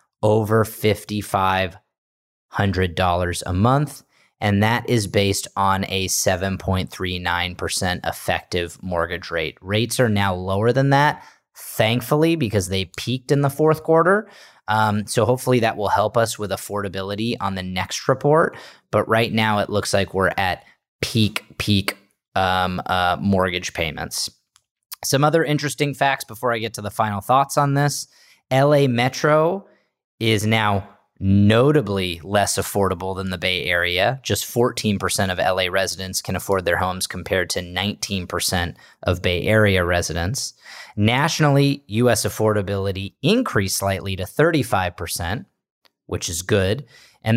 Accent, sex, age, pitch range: American, male, 30-49, 95-125 Hz